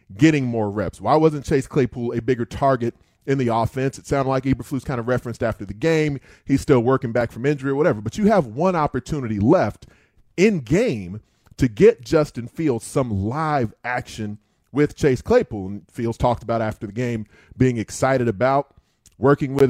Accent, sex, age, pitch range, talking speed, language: American, male, 30-49, 115-145 Hz, 185 wpm, English